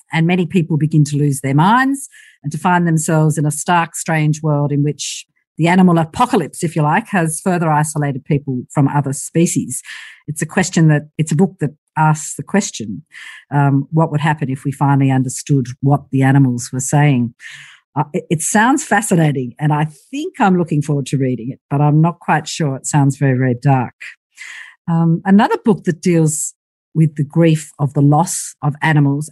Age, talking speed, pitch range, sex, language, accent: 50-69, 190 wpm, 140-175 Hz, female, English, Australian